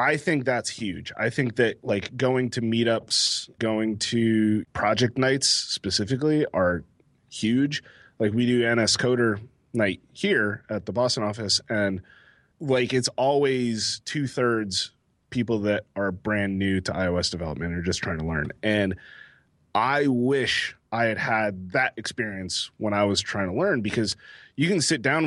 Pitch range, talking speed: 100-125 Hz, 155 wpm